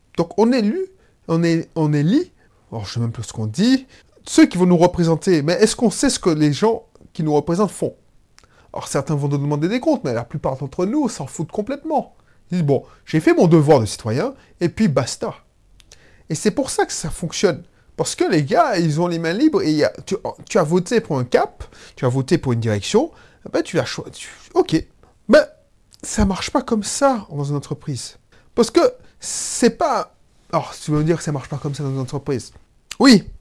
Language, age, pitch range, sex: French, 30-49, 150-245 Hz, male